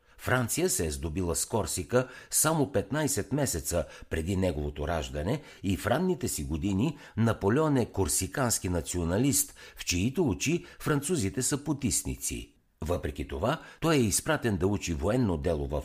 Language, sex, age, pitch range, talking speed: Bulgarian, male, 60-79, 80-125 Hz, 140 wpm